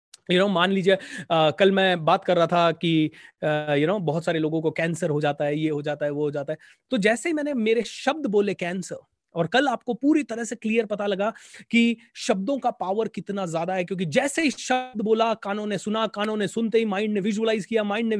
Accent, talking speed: native, 245 wpm